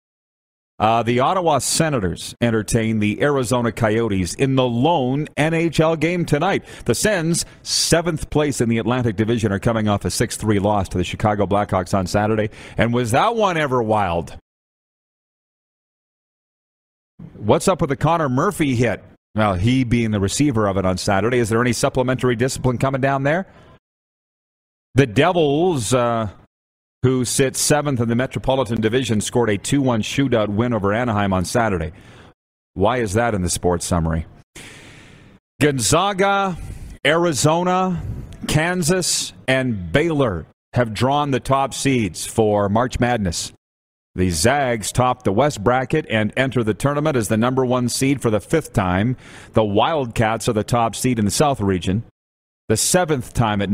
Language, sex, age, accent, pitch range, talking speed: English, male, 40-59, American, 100-135 Hz, 150 wpm